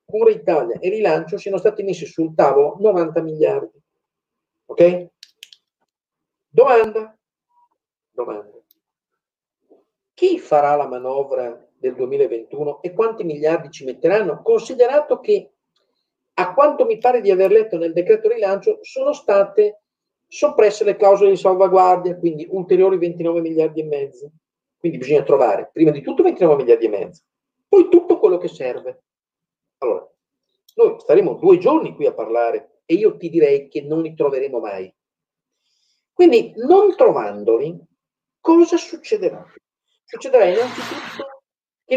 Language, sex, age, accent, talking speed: Italian, male, 40-59, native, 130 wpm